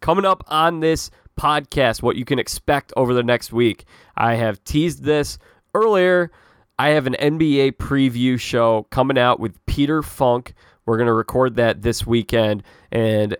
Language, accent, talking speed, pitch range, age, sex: English, American, 165 wpm, 110-135 Hz, 20-39, male